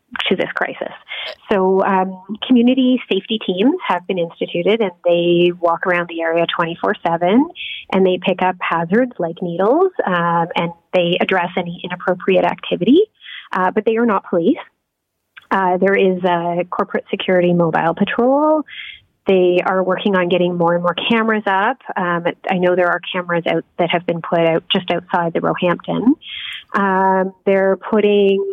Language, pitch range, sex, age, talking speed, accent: English, 175-230 Hz, female, 30-49, 160 wpm, American